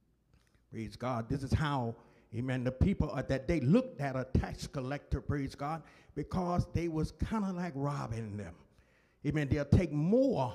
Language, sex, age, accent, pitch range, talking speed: English, male, 50-69, American, 130-180 Hz, 170 wpm